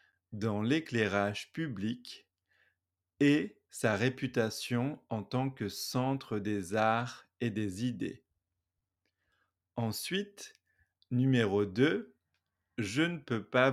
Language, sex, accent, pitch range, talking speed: French, male, French, 100-135 Hz, 95 wpm